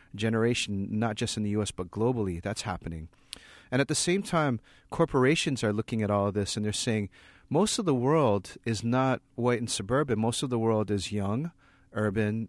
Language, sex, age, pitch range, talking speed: English, male, 30-49, 105-125 Hz, 195 wpm